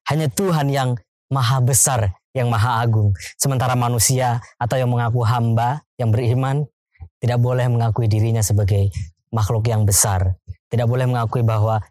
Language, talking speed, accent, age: Indonesian, 140 wpm, native, 20-39